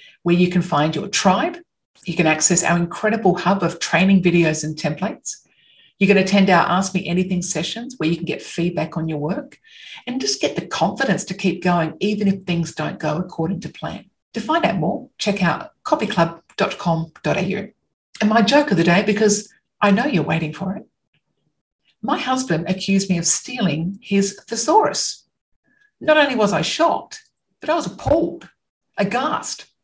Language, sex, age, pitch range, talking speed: English, female, 50-69, 170-210 Hz, 175 wpm